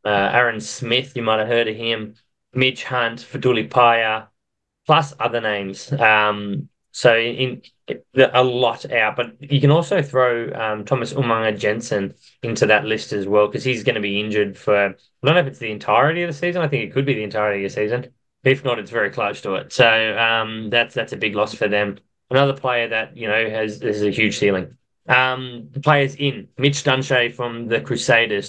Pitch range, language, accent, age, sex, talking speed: 110-130 Hz, English, Australian, 20-39, male, 210 wpm